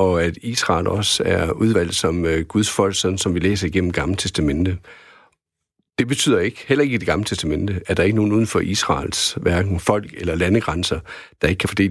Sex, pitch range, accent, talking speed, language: male, 85-110 Hz, native, 205 wpm, Danish